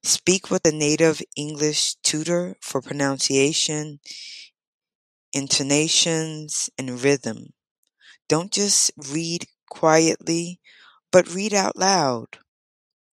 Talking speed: 85 wpm